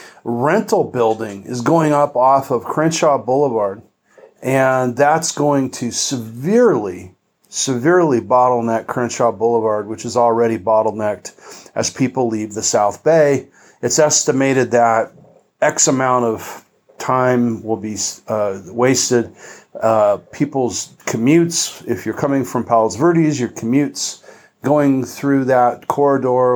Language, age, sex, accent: English, 40-59, male, American